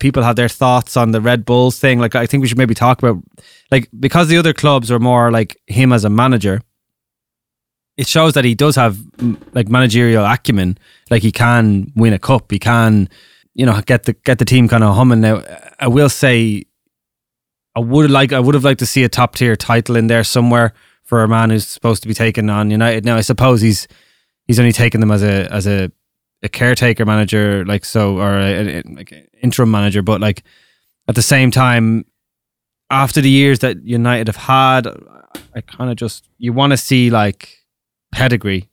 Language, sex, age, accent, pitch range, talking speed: English, male, 20-39, Irish, 105-125 Hz, 210 wpm